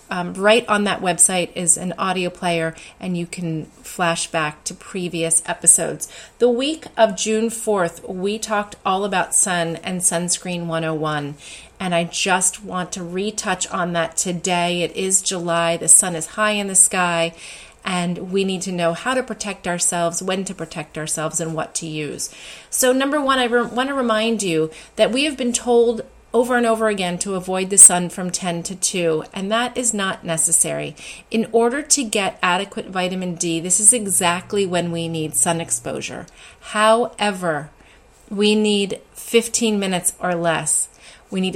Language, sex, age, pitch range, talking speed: English, female, 30-49, 170-210 Hz, 175 wpm